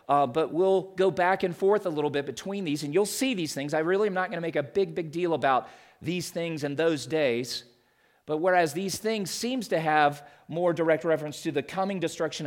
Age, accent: 40-59, American